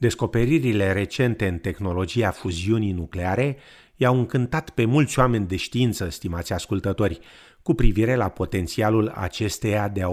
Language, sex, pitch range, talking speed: Romanian, male, 90-120 Hz, 130 wpm